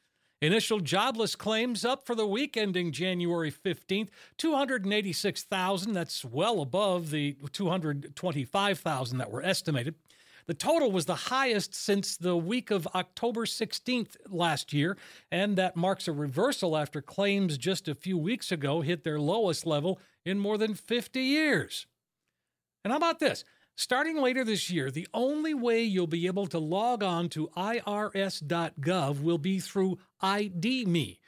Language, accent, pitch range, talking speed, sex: English, American, 170-225 Hz, 145 wpm, male